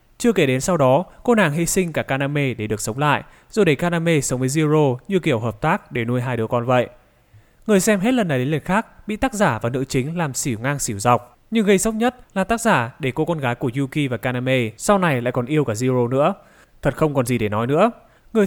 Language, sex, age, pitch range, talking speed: Vietnamese, male, 20-39, 125-180 Hz, 265 wpm